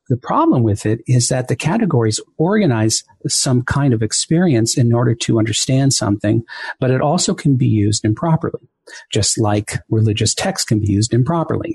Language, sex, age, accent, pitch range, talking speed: English, male, 50-69, American, 110-140 Hz, 170 wpm